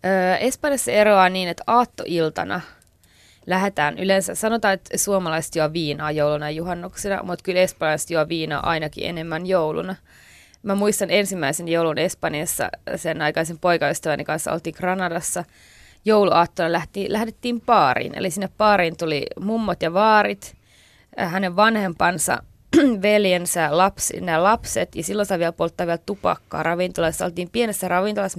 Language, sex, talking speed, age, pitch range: Finnish, female, 130 wpm, 20-39, 160-205 Hz